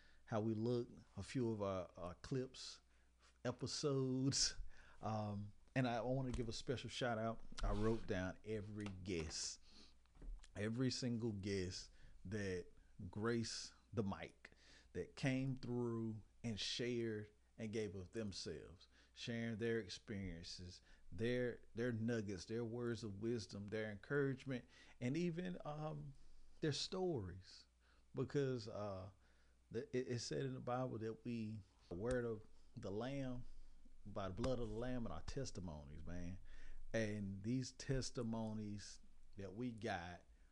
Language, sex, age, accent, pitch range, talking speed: English, male, 40-59, American, 100-130 Hz, 130 wpm